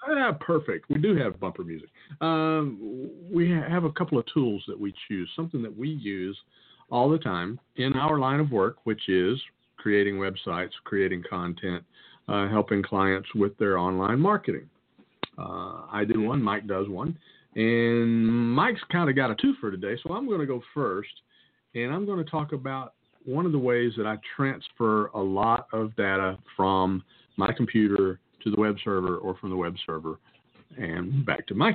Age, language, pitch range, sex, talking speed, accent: 50-69, English, 100-145 Hz, male, 185 wpm, American